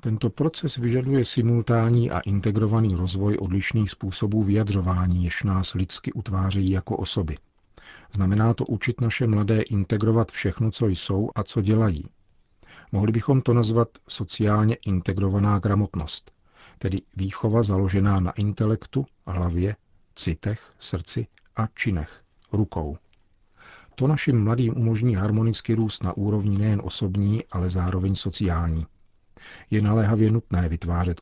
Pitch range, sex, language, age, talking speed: 95-110 Hz, male, Czech, 40-59, 120 wpm